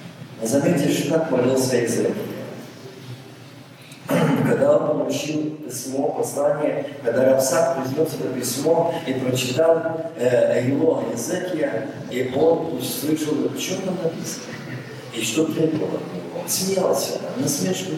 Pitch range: 130-165 Hz